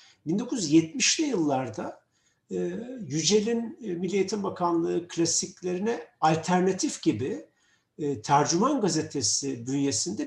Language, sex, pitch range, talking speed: Turkish, male, 135-200 Hz, 80 wpm